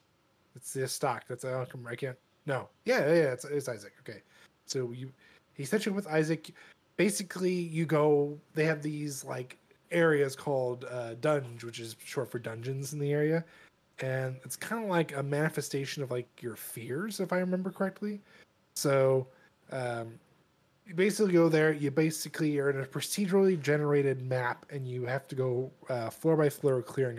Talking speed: 175 wpm